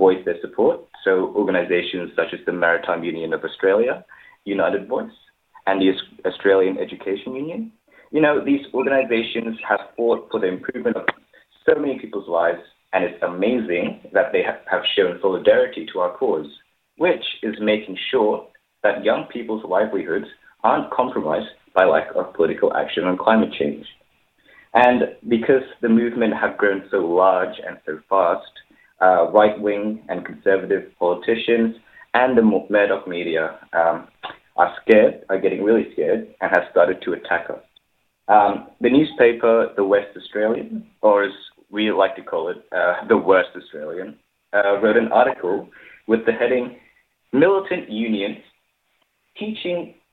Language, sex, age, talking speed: English, male, 30-49, 145 wpm